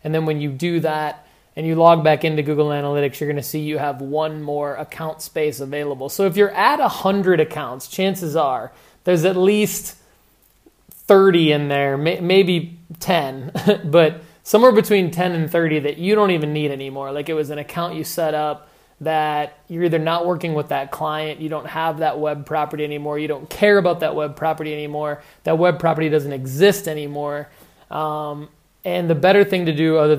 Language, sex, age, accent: English, male, 20-39, American